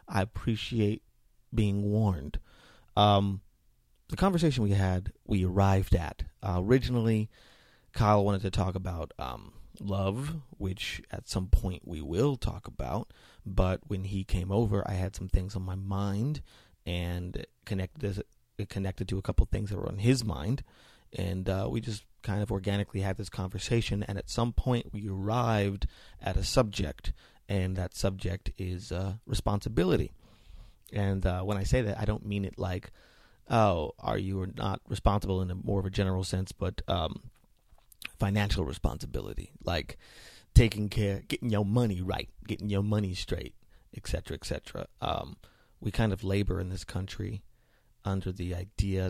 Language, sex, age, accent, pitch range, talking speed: English, male, 30-49, American, 95-105 Hz, 165 wpm